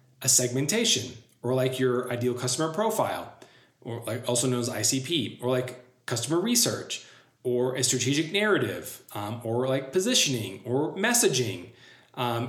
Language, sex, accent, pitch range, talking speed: English, male, American, 120-135 Hz, 140 wpm